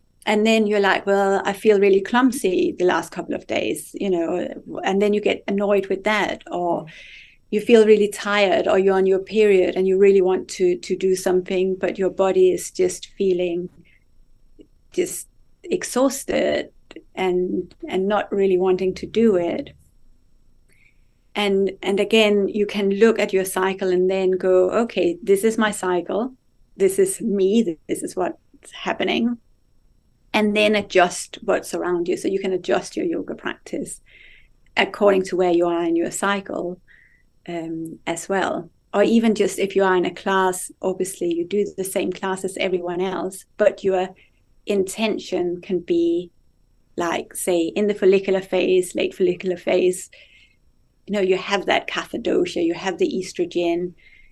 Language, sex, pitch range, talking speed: English, female, 185-210 Hz, 160 wpm